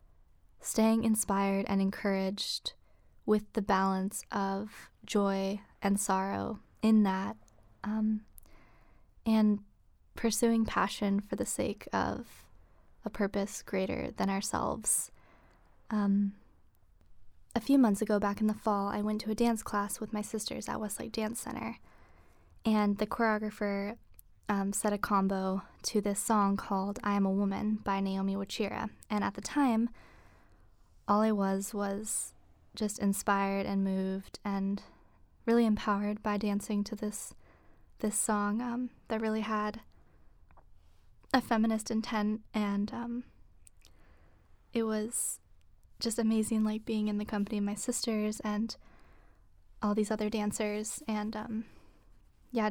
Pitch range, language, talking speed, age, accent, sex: 195-220 Hz, English, 130 wpm, 20-39, American, female